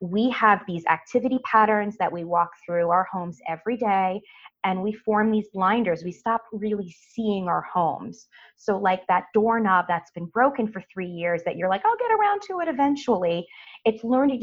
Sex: female